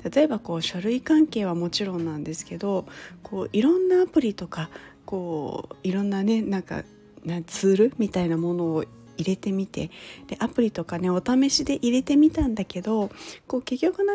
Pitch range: 180-265 Hz